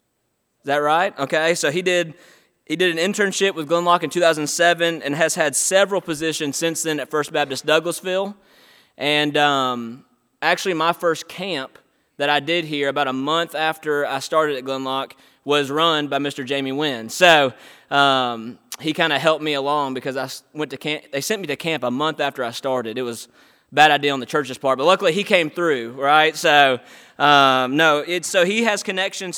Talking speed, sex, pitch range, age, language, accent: 195 wpm, male, 140-175 Hz, 20-39, English, American